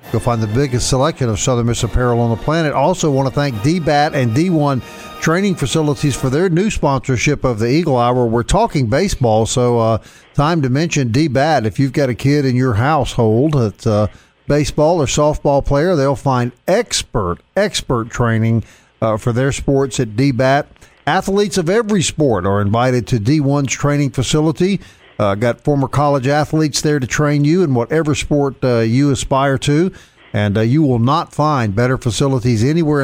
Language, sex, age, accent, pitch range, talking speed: English, male, 50-69, American, 120-155 Hz, 180 wpm